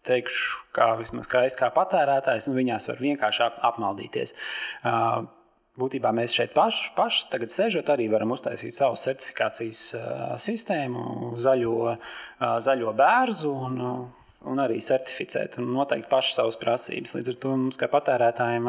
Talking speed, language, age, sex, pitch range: 135 wpm, English, 20-39, male, 115-135 Hz